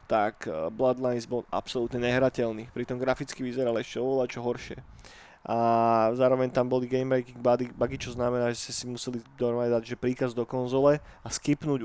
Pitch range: 120-135 Hz